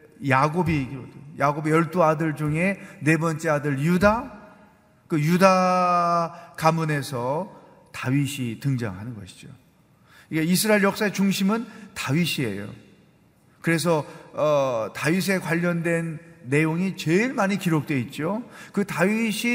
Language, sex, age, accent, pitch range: Korean, male, 40-59, native, 130-180 Hz